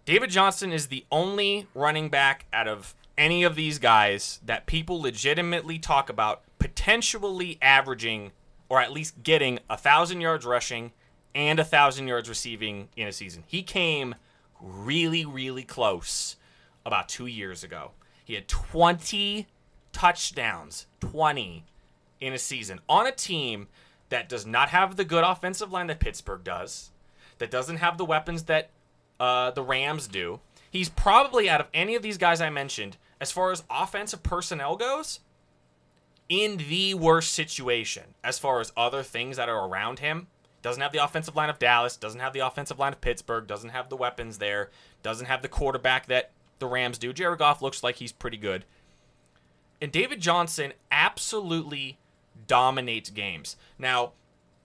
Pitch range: 110-165 Hz